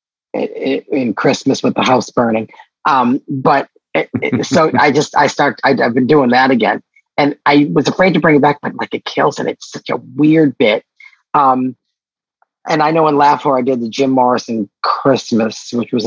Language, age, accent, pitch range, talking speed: English, 40-59, American, 120-155 Hz, 185 wpm